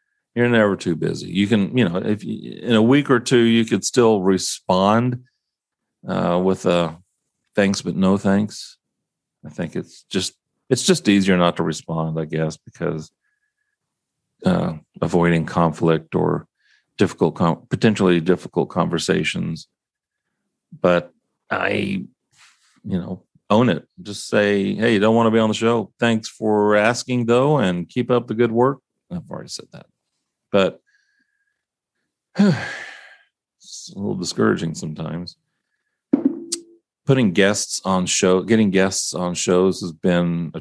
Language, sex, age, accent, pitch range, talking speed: English, male, 40-59, American, 90-120 Hz, 140 wpm